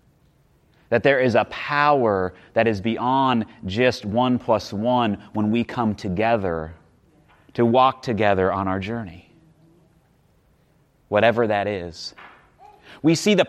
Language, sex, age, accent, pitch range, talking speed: English, male, 30-49, American, 115-165 Hz, 125 wpm